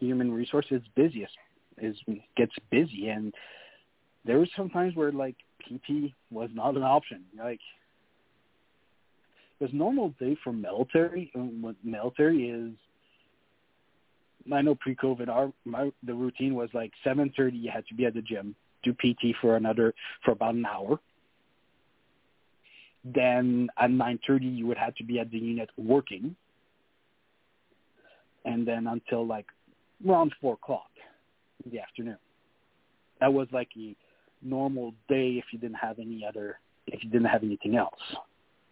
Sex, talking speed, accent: male, 145 wpm, Canadian